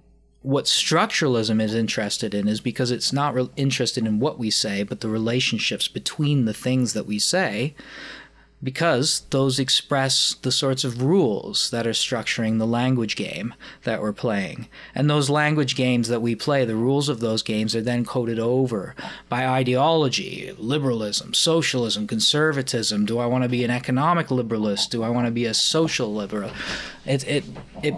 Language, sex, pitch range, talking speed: English, male, 110-135 Hz, 170 wpm